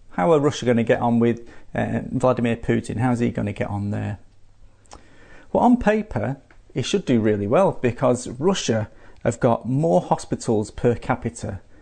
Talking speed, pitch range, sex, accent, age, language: 175 wpm, 100-125 Hz, male, British, 40-59, English